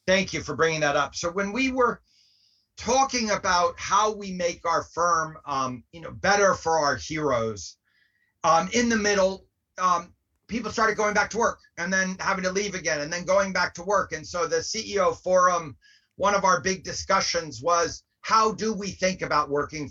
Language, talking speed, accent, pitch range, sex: Danish, 195 wpm, American, 140-195 Hz, male